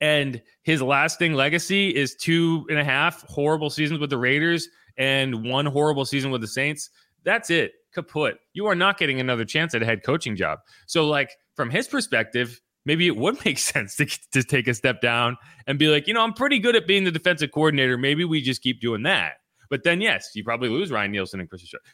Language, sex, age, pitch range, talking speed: English, male, 20-39, 120-160 Hz, 220 wpm